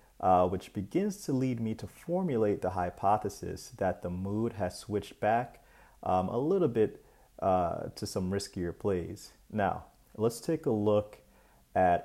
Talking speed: 155 wpm